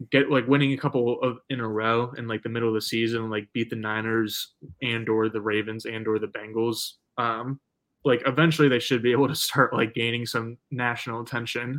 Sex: male